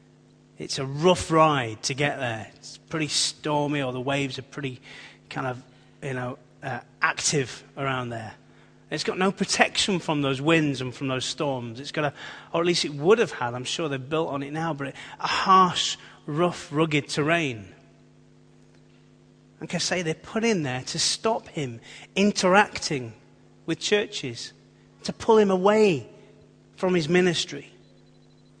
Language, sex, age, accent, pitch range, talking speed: English, male, 30-49, British, 130-160 Hz, 160 wpm